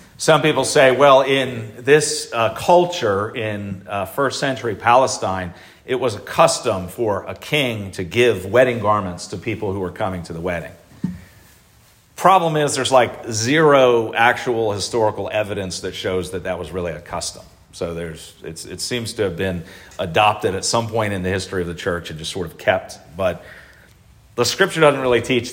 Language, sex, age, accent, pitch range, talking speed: English, male, 40-59, American, 90-120 Hz, 180 wpm